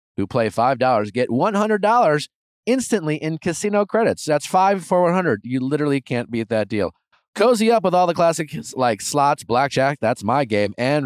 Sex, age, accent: male, 30-49, American